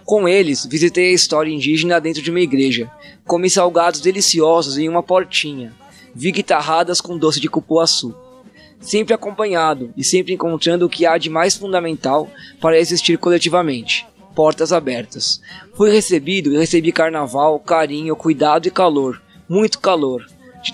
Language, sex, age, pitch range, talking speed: Portuguese, male, 20-39, 150-180 Hz, 145 wpm